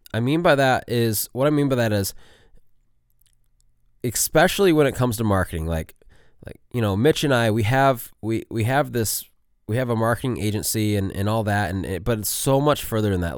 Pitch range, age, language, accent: 95-120 Hz, 20-39, English, American